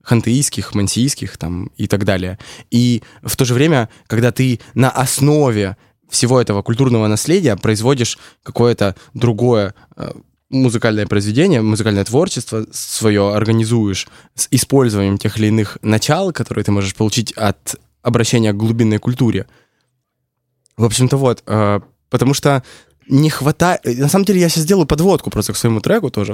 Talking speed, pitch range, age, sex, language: 140 wpm, 110-135 Hz, 20-39, male, Russian